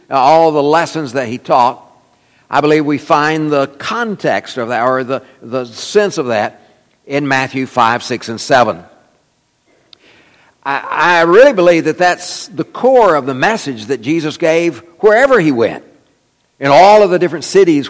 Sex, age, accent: male, 60-79, American